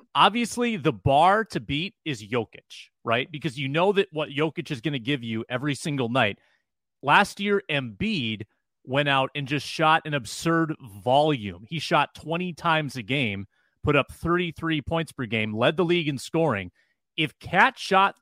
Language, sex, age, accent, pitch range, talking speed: English, male, 30-49, American, 125-165 Hz, 175 wpm